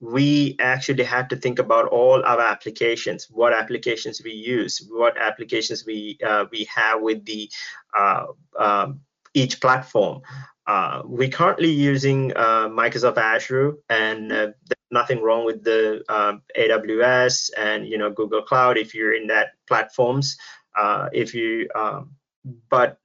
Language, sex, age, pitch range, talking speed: English, male, 20-39, 110-135 Hz, 145 wpm